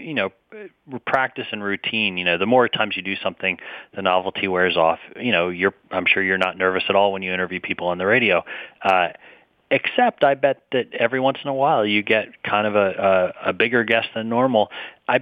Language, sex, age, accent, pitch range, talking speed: English, male, 30-49, American, 95-110 Hz, 220 wpm